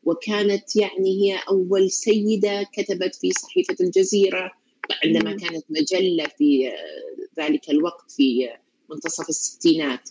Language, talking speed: Arabic, 105 wpm